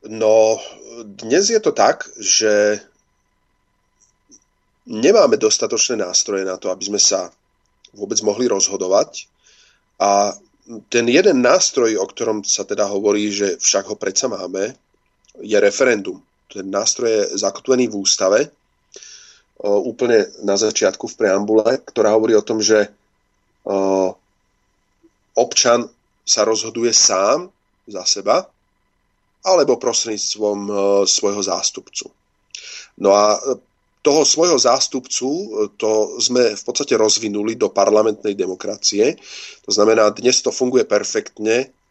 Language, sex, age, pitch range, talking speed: Slovak, male, 30-49, 100-120 Hz, 110 wpm